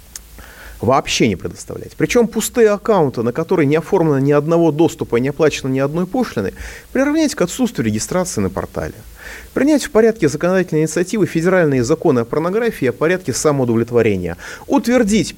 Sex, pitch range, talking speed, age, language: male, 120-175 Hz, 150 wpm, 30-49, Russian